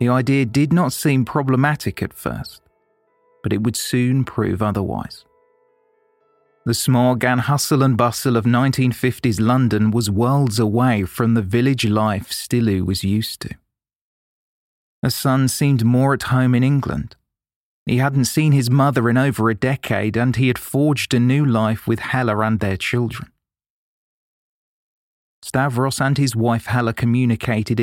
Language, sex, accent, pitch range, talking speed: English, male, British, 110-130 Hz, 150 wpm